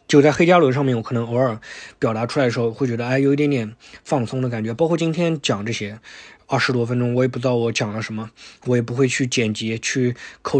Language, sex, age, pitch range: Chinese, male, 20-39, 115-150 Hz